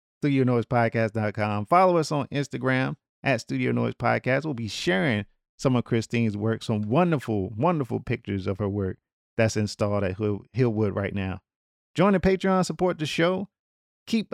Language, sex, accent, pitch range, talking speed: English, male, American, 110-175 Hz, 140 wpm